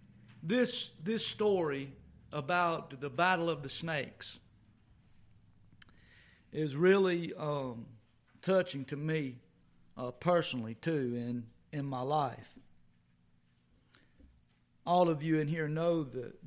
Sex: male